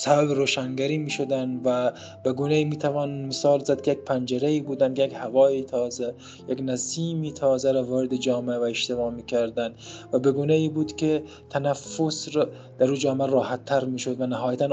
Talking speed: 185 wpm